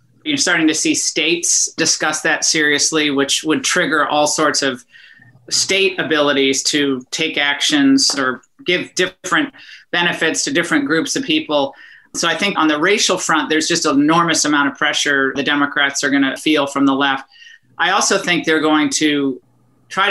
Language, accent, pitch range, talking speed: English, American, 140-165 Hz, 170 wpm